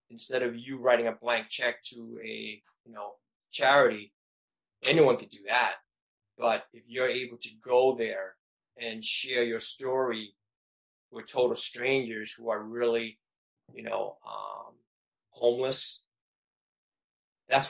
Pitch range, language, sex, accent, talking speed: 115-125 Hz, English, male, American, 130 wpm